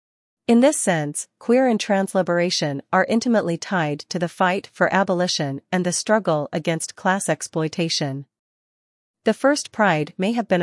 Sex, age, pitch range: female, 40-59, 160-200 Hz